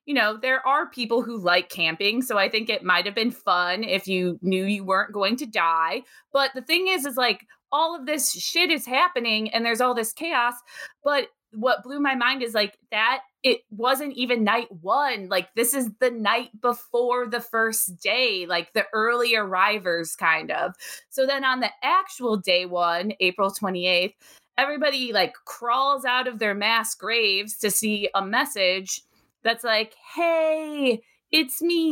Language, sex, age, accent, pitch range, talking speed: English, female, 20-39, American, 215-285 Hz, 175 wpm